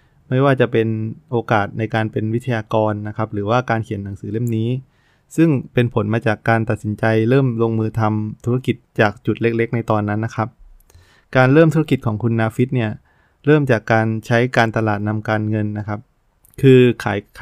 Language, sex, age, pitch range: Thai, male, 20-39, 110-125 Hz